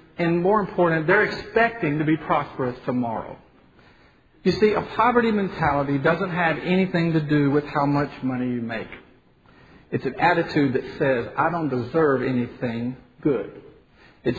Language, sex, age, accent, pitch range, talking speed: English, male, 50-69, American, 145-195 Hz, 150 wpm